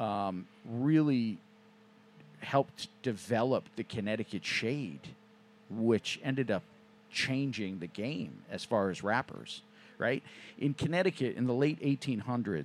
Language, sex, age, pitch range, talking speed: English, male, 50-69, 115-150 Hz, 110 wpm